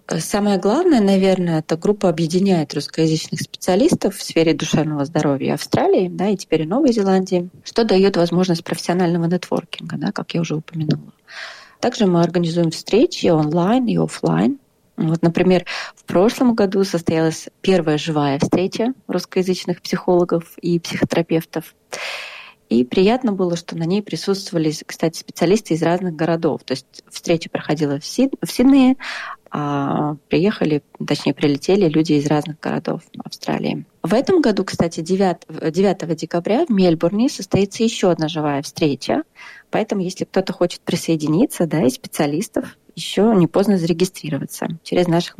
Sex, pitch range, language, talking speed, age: female, 160-195 Hz, Russian, 140 wpm, 30-49